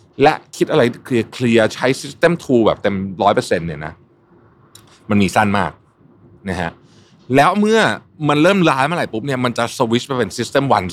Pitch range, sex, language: 100-145 Hz, male, Thai